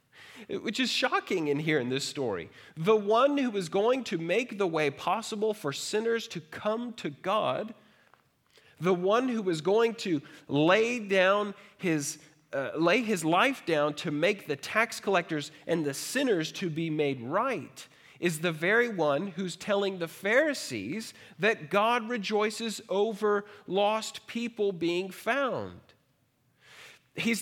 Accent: American